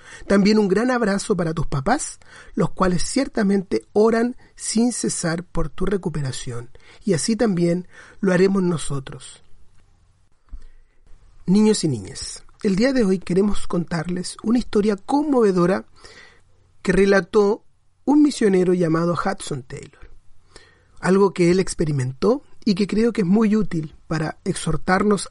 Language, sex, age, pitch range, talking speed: Spanish, male, 40-59, 170-220 Hz, 130 wpm